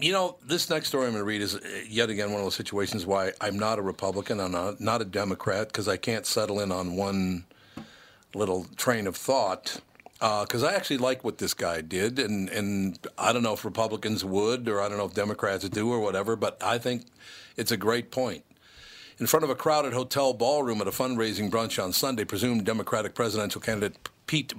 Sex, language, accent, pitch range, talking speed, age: male, English, American, 100-125 Hz, 215 wpm, 50-69